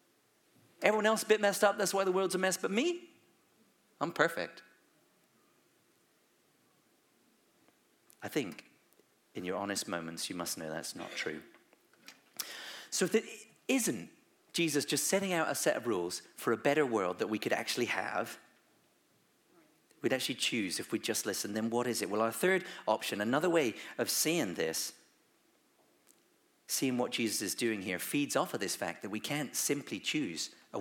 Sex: male